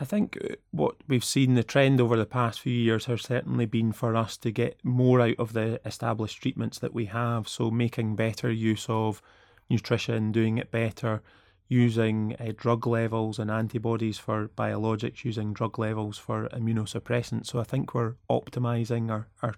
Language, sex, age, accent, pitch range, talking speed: English, male, 20-39, British, 110-120 Hz, 175 wpm